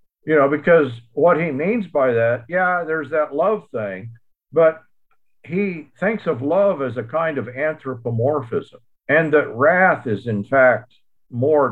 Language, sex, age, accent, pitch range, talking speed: English, male, 50-69, American, 115-175 Hz, 155 wpm